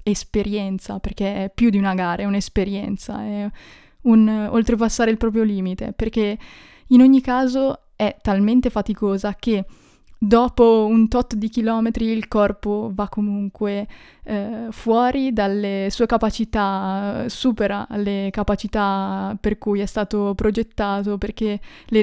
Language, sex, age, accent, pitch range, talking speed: Italian, female, 20-39, native, 200-220 Hz, 130 wpm